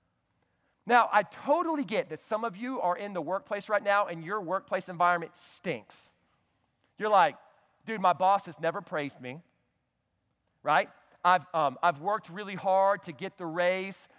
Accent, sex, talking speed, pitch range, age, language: American, male, 165 wpm, 150-195 Hz, 40-59, English